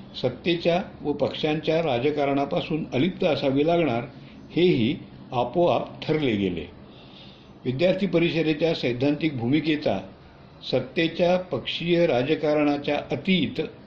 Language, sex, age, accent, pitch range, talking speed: Hindi, male, 60-79, native, 120-170 Hz, 80 wpm